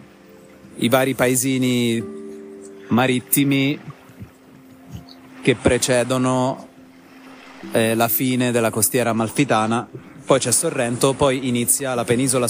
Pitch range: 105-135 Hz